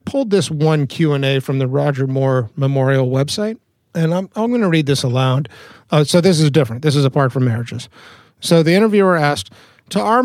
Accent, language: American, English